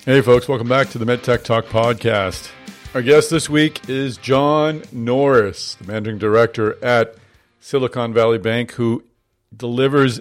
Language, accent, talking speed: English, American, 145 wpm